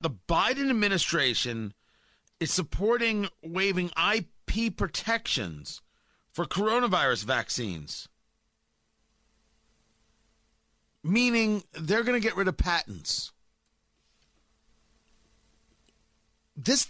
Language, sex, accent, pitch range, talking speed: English, male, American, 160-230 Hz, 70 wpm